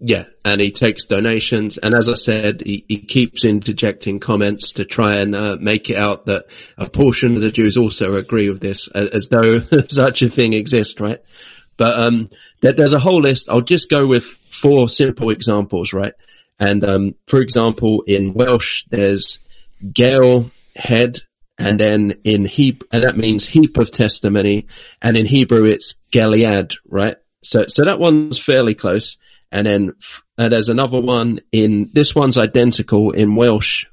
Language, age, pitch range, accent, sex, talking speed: English, 40-59, 105-120 Hz, British, male, 170 wpm